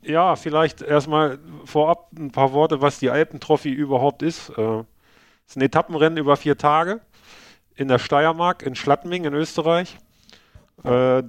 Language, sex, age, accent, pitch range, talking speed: German, male, 40-59, German, 125-155 Hz, 150 wpm